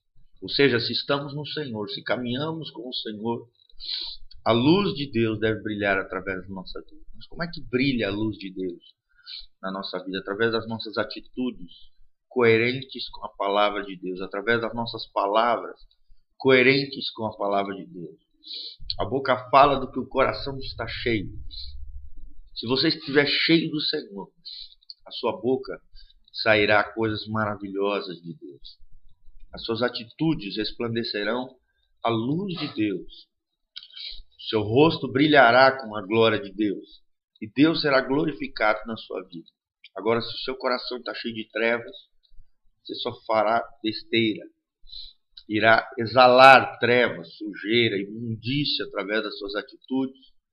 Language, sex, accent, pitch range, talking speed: Portuguese, male, Brazilian, 105-135 Hz, 145 wpm